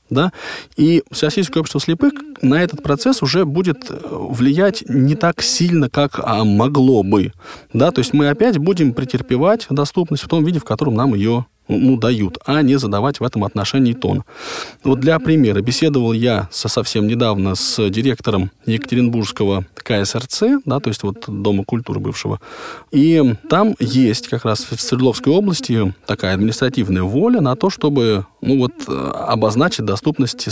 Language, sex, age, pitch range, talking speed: Russian, male, 20-39, 115-150 Hz, 145 wpm